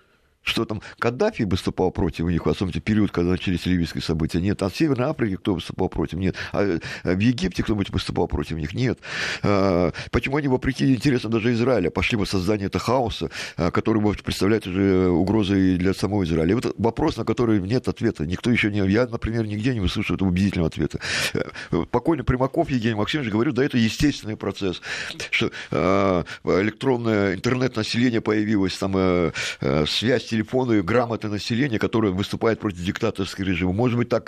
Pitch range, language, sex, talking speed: 95-120 Hz, Russian, male, 165 wpm